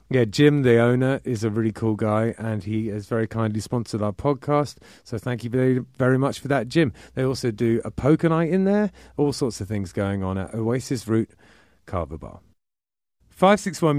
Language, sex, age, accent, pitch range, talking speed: English, male, 30-49, British, 110-155 Hz, 195 wpm